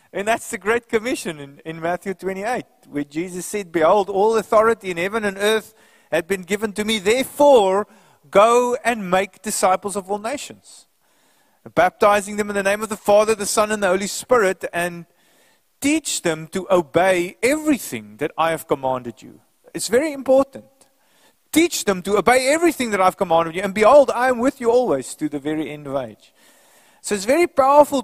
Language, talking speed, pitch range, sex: English, 185 wpm, 190-275 Hz, male